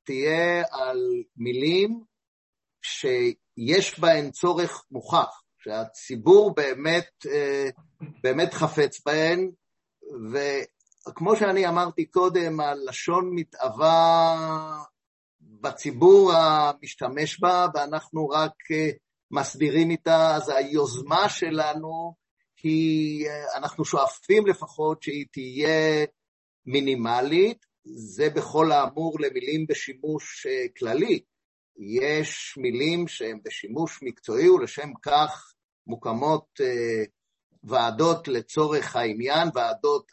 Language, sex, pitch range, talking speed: Hebrew, male, 145-190 Hz, 80 wpm